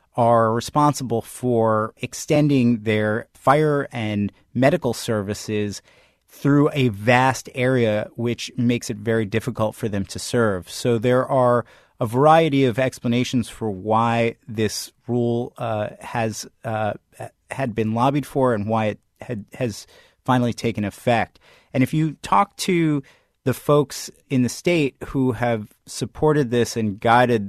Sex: male